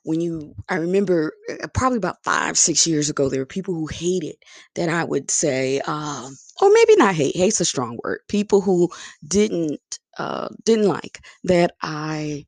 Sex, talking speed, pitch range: female, 175 wpm, 150-235 Hz